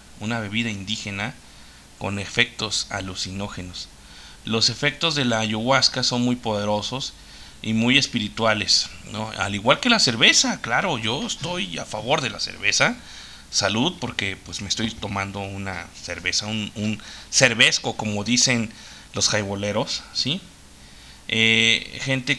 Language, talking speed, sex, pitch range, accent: Spanish, 130 wpm, male, 100-115 Hz, Mexican